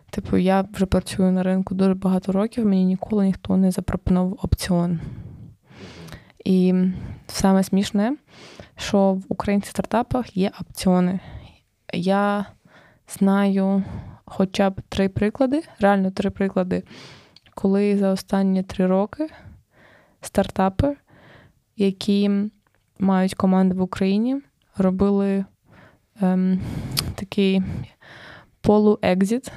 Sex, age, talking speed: female, 20-39, 95 wpm